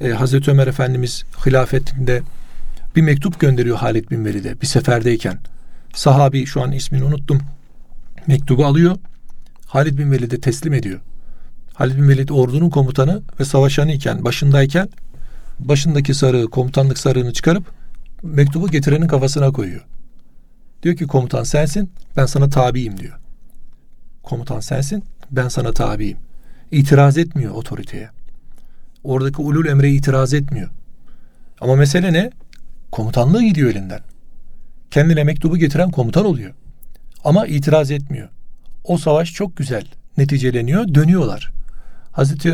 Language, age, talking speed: Turkish, 40-59, 120 wpm